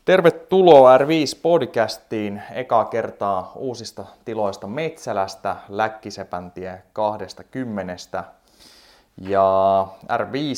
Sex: male